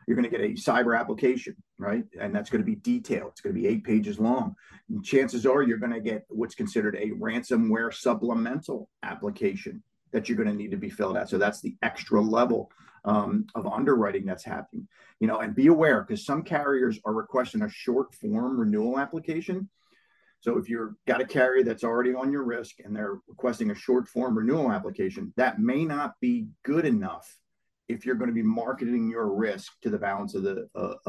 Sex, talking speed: male, 200 wpm